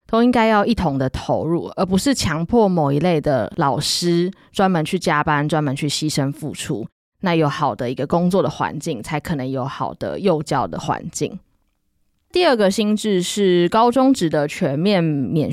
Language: Chinese